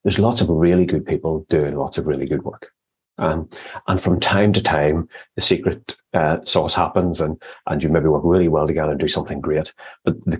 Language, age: English, 30-49